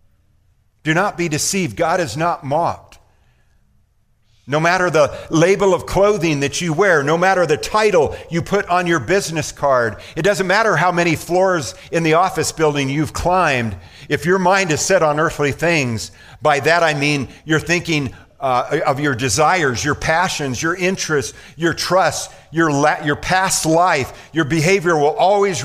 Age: 50-69